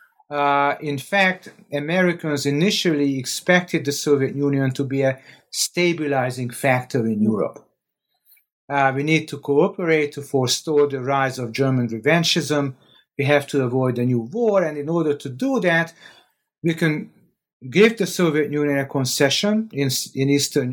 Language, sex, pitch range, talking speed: English, male, 135-165 Hz, 150 wpm